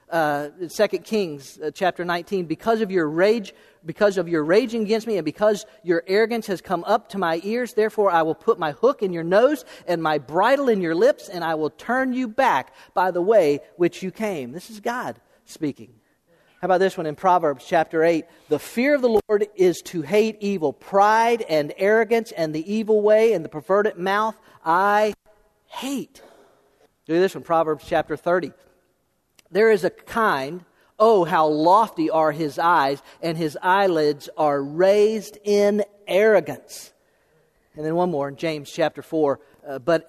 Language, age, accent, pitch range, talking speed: English, 40-59, American, 165-235 Hz, 175 wpm